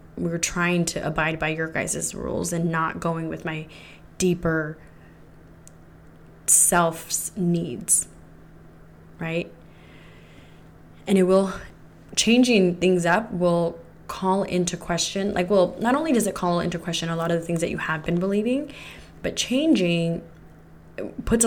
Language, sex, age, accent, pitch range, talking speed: English, female, 20-39, American, 165-185 Hz, 140 wpm